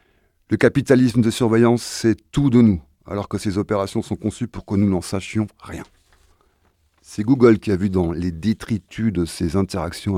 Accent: French